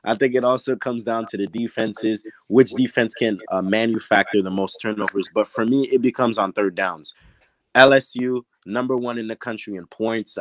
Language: English